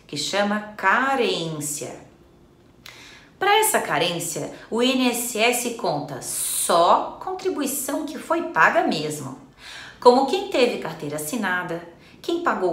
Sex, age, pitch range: female, 30-49, 155-250 Hz